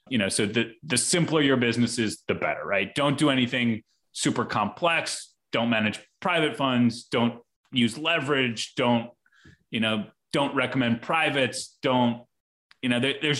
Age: 30-49